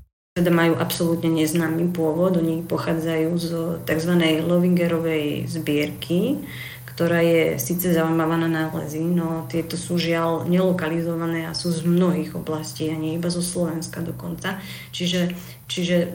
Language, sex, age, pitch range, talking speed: Slovak, female, 30-49, 160-175 Hz, 125 wpm